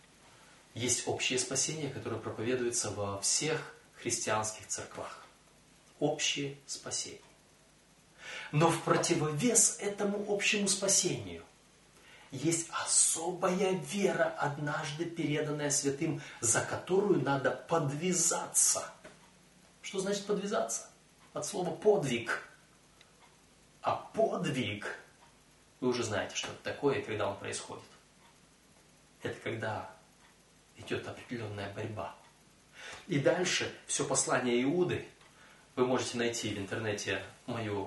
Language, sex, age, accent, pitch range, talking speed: Russian, male, 30-49, native, 110-165 Hz, 95 wpm